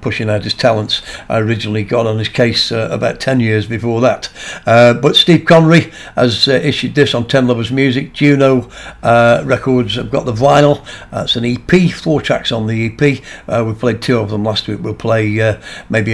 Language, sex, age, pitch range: English, male, 60-79, 110-130 Hz